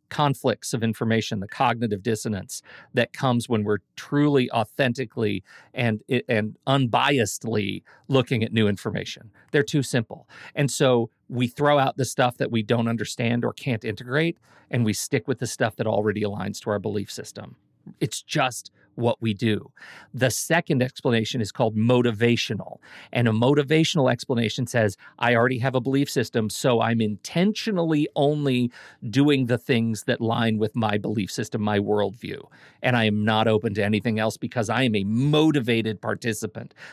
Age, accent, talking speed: 40-59, American, 165 wpm